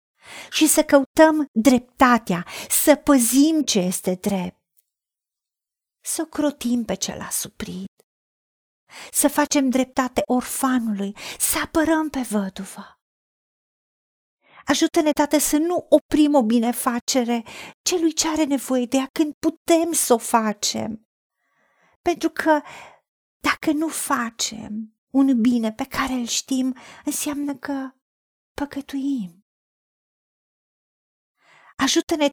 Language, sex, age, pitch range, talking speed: Romanian, female, 40-59, 225-295 Hz, 105 wpm